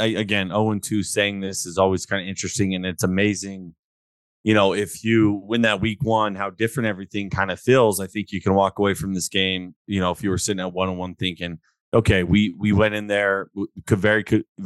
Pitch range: 95-110 Hz